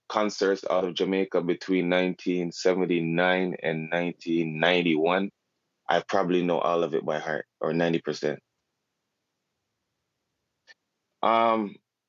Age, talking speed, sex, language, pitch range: 20-39, 100 wpm, male, English, 90-110 Hz